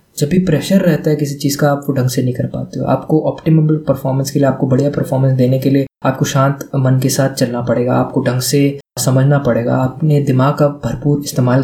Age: 20-39